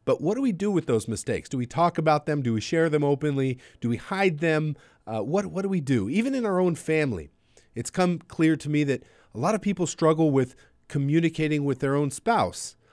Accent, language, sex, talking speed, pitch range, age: American, English, male, 230 wpm, 115-155 Hz, 40-59